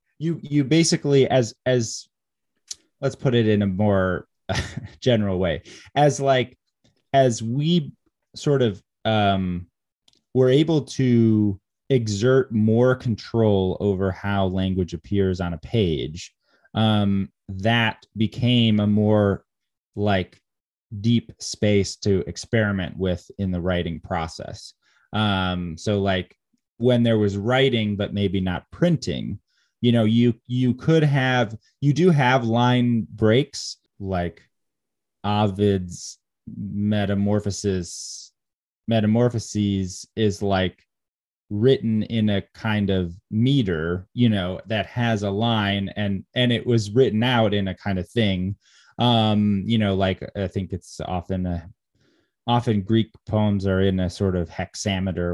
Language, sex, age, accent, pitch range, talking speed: English, male, 20-39, American, 95-120 Hz, 125 wpm